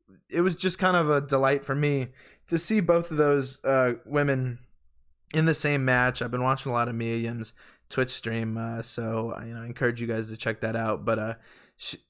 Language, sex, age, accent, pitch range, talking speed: English, male, 20-39, American, 115-140 Hz, 210 wpm